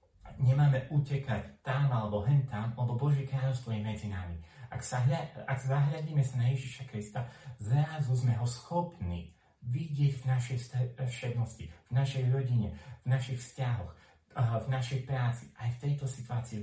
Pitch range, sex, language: 105-135 Hz, male, Slovak